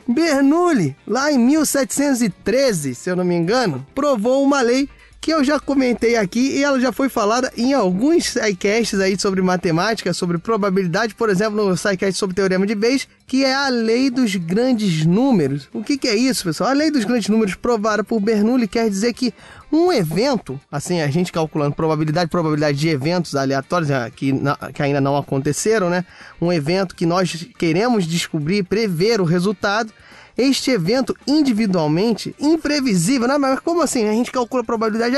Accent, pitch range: Brazilian, 175-255 Hz